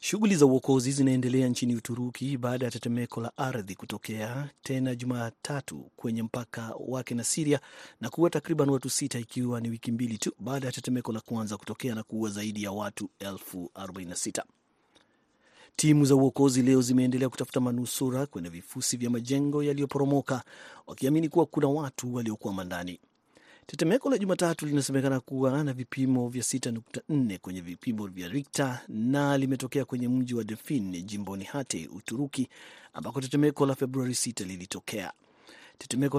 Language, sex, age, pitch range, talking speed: Swahili, male, 40-59, 120-140 Hz, 150 wpm